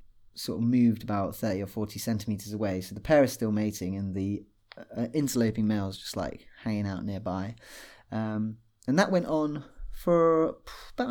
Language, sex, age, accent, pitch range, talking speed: English, male, 20-39, British, 110-145 Hz, 180 wpm